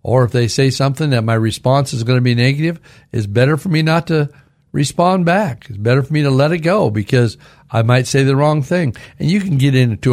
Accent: American